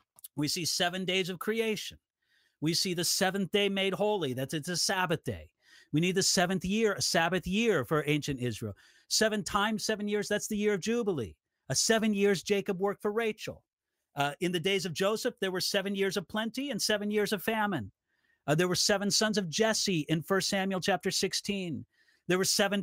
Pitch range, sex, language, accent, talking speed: 165-205 Hz, male, English, American, 200 wpm